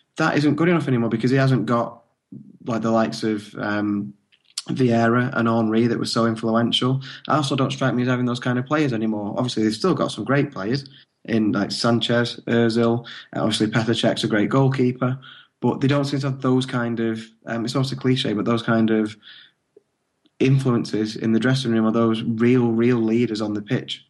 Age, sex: 20-39, male